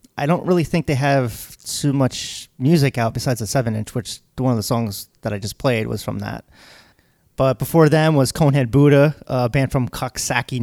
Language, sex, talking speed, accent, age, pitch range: English, male, 200 wpm, American, 30-49, 110-140 Hz